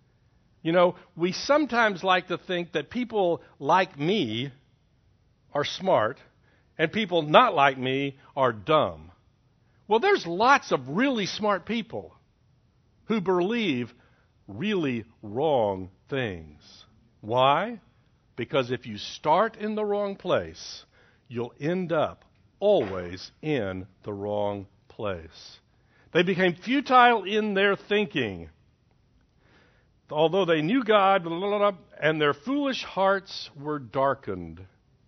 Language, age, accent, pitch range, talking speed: English, 60-79, American, 120-195 Hz, 110 wpm